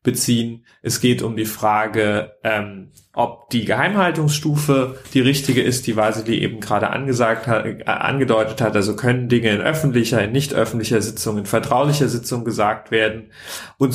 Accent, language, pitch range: German, German, 110-130 Hz